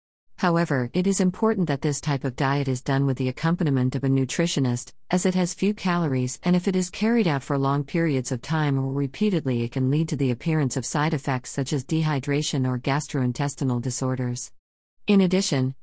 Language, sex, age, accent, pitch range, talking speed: English, female, 50-69, American, 130-170 Hz, 195 wpm